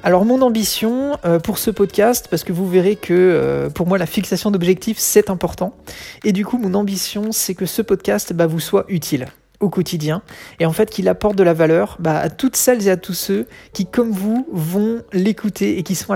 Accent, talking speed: French, 220 wpm